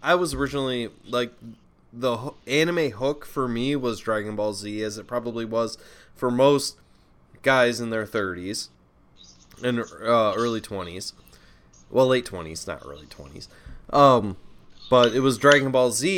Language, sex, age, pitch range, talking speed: English, male, 20-39, 110-140 Hz, 150 wpm